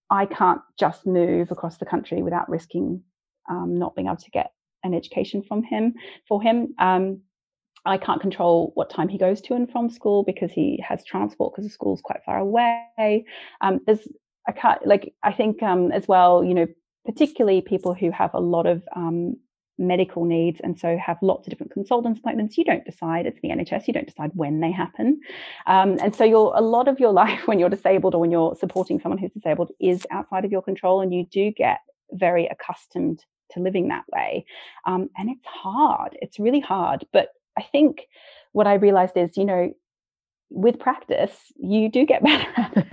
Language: English